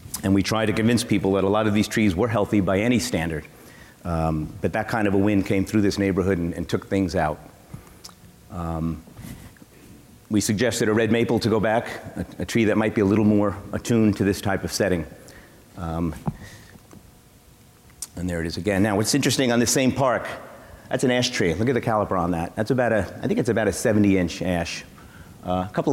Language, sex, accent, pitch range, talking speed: English, male, American, 95-120 Hz, 215 wpm